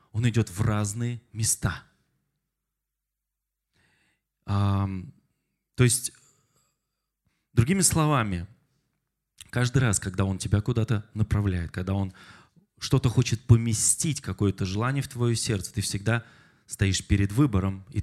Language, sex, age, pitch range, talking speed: Russian, male, 20-39, 100-135 Hz, 105 wpm